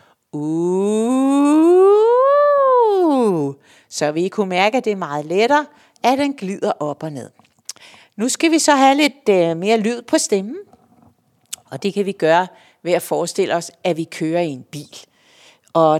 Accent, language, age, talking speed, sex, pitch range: native, Danish, 60-79, 160 wpm, female, 165-235 Hz